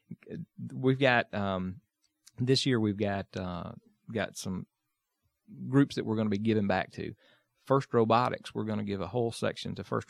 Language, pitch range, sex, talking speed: English, 105-120 Hz, male, 180 wpm